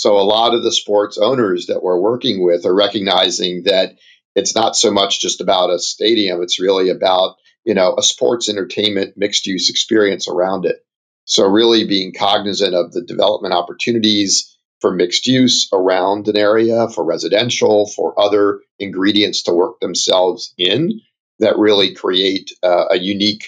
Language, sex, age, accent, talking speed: English, male, 50-69, American, 165 wpm